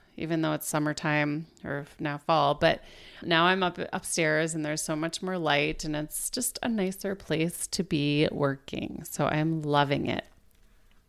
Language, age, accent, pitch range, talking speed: English, 30-49, American, 150-190 Hz, 170 wpm